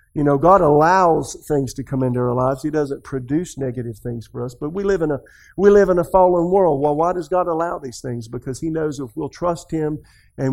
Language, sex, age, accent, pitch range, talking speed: English, male, 50-69, American, 130-160 Hz, 245 wpm